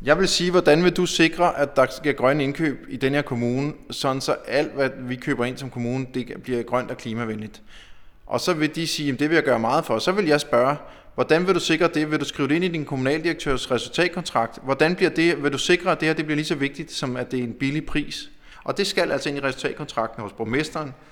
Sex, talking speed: male, 260 wpm